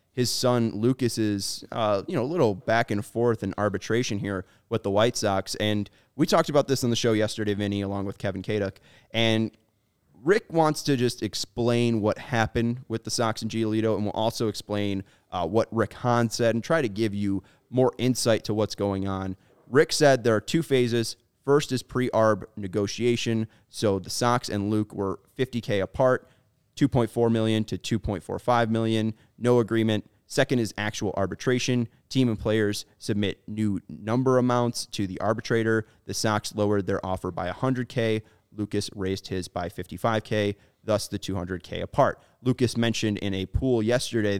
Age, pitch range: 30-49, 100-120 Hz